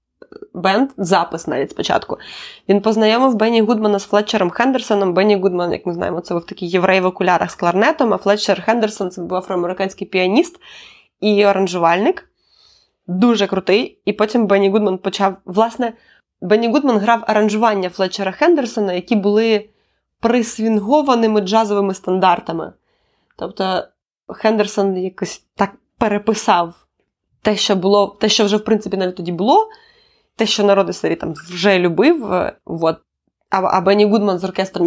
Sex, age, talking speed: female, 20-39, 145 wpm